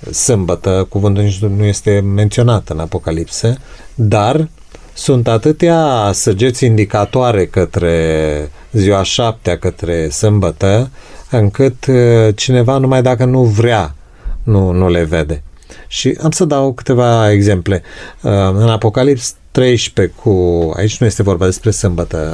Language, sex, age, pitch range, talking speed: Romanian, male, 30-49, 95-125 Hz, 120 wpm